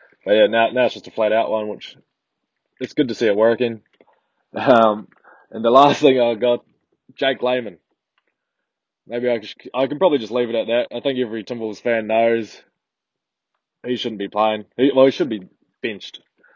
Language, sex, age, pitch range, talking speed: English, male, 20-39, 110-130 Hz, 190 wpm